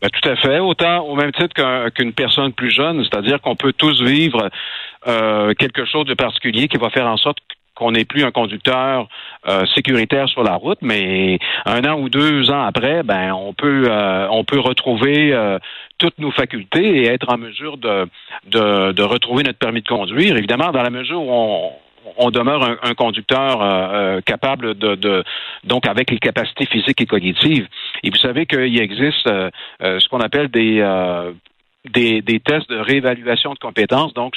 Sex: male